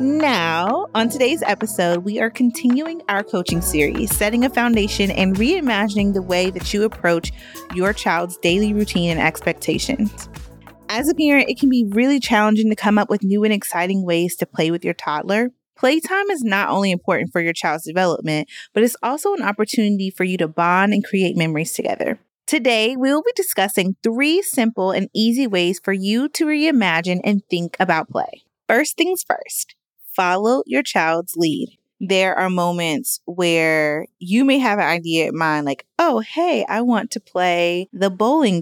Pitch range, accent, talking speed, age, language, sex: 170-240 Hz, American, 175 wpm, 30-49, English, female